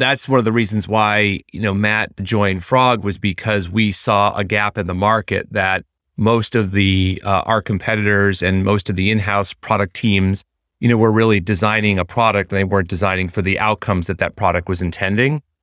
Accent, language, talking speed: American, English, 205 wpm